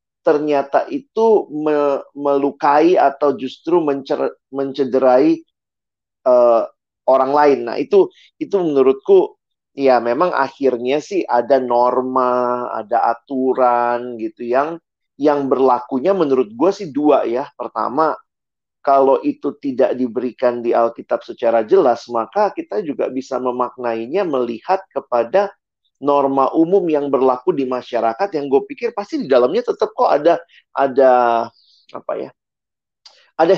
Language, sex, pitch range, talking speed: Indonesian, male, 125-170 Hz, 120 wpm